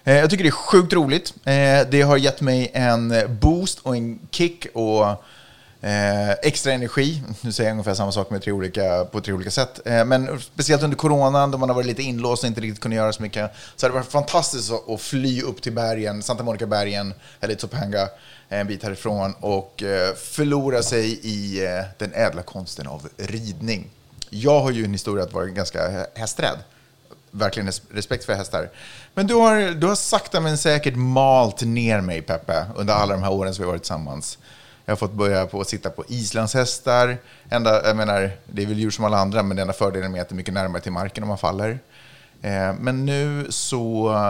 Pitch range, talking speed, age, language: 100-130 Hz, 200 wpm, 30-49, Swedish